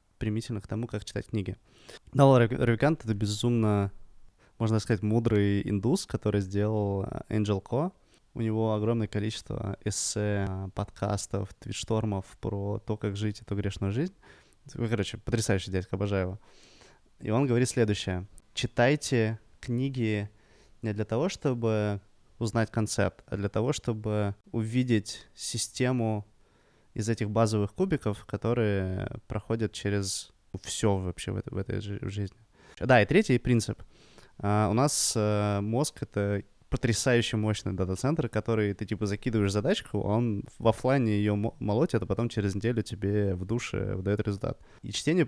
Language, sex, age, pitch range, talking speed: Russian, male, 20-39, 100-115 Hz, 140 wpm